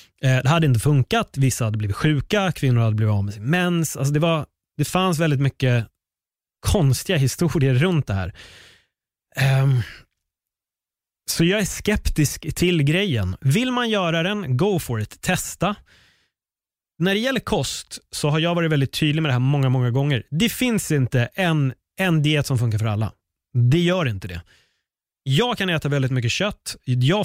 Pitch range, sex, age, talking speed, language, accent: 125-170 Hz, male, 30-49, 175 wpm, Swedish, native